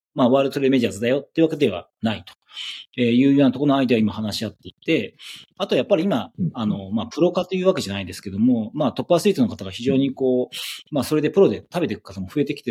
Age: 40-59